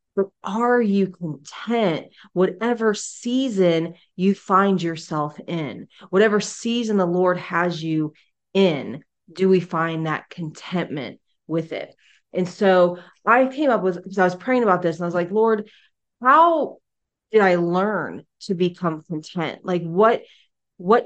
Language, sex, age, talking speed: English, female, 30-49, 145 wpm